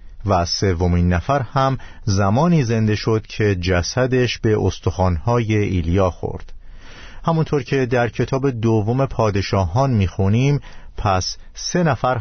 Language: Persian